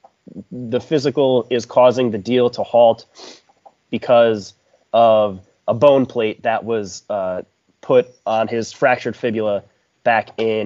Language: English